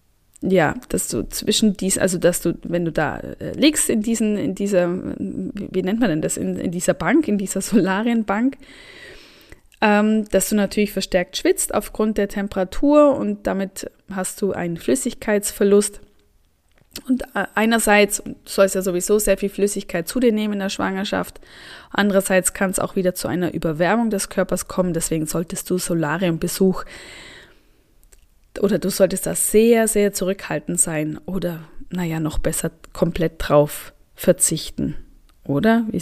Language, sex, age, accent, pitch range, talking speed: German, female, 20-39, German, 185-220 Hz, 150 wpm